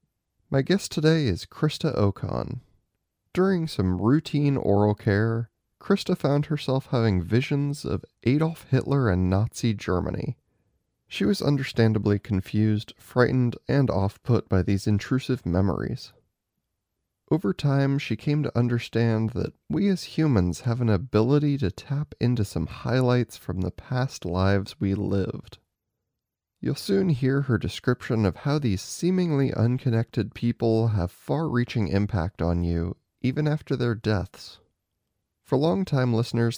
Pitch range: 100-135 Hz